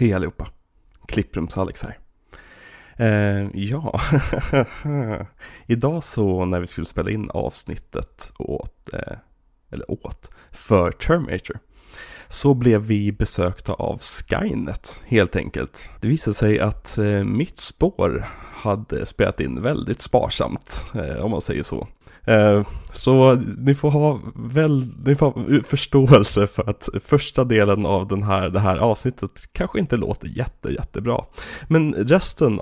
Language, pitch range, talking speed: Swedish, 95-125 Hz, 135 wpm